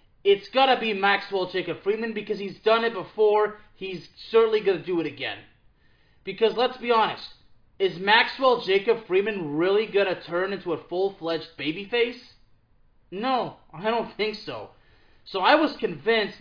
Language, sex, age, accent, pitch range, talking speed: English, male, 20-39, American, 160-240 Hz, 155 wpm